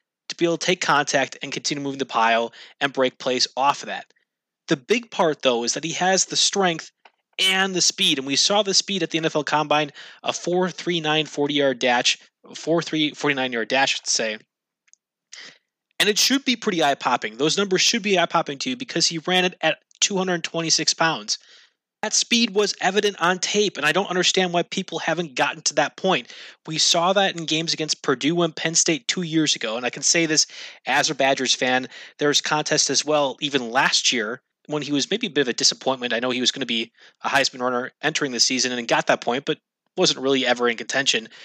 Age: 20-39